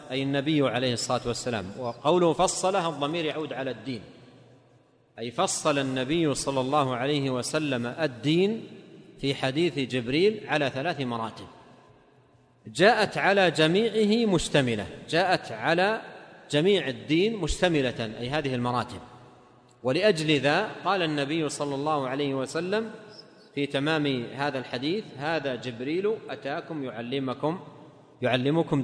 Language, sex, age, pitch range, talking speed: Arabic, male, 40-59, 130-170 Hz, 110 wpm